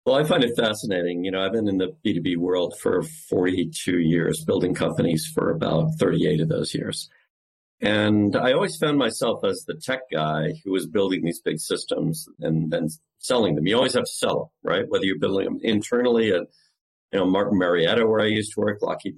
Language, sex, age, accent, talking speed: English, male, 50-69, American, 205 wpm